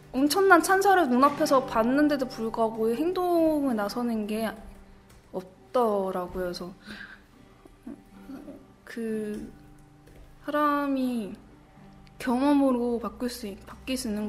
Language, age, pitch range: Korean, 20-39, 215-270 Hz